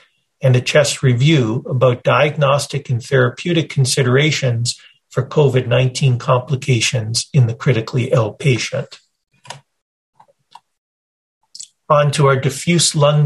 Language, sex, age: English, male, 40-59